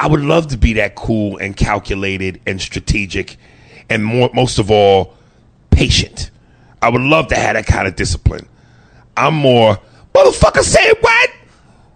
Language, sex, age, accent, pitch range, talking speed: English, male, 30-49, American, 110-145 Hz, 155 wpm